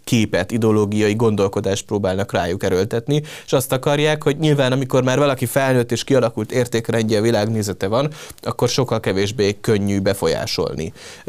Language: Hungarian